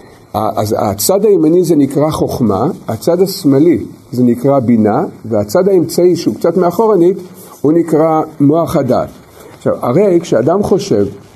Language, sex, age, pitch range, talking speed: Hebrew, male, 50-69, 135-185 Hz, 125 wpm